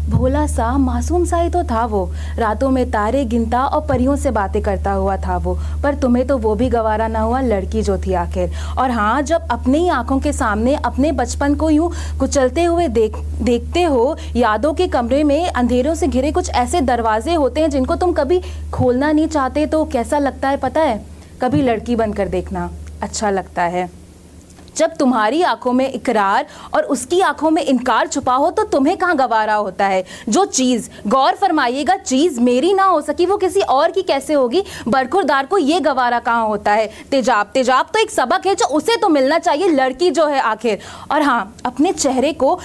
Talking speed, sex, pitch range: 195 wpm, female, 220-315 Hz